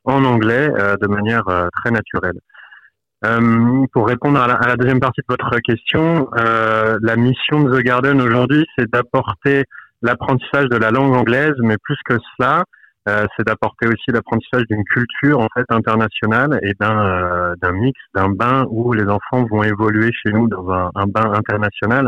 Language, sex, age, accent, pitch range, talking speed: French, male, 30-49, French, 100-125 Hz, 180 wpm